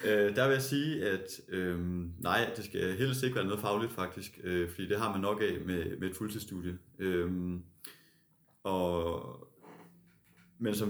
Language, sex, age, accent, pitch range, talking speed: Danish, male, 30-49, native, 90-120 Hz, 165 wpm